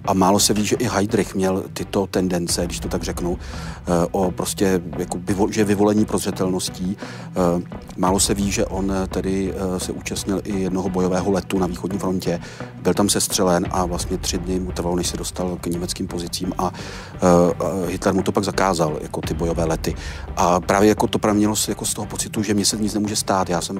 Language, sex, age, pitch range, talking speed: Czech, male, 40-59, 90-100 Hz, 200 wpm